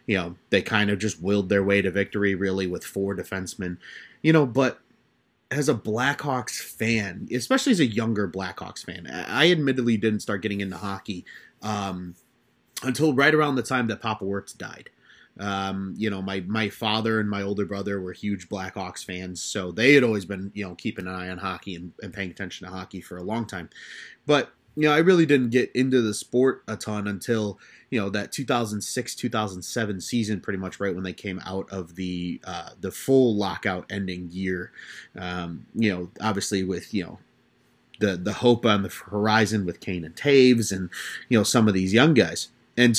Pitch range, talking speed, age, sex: 95-120 Hz, 200 wpm, 30-49, male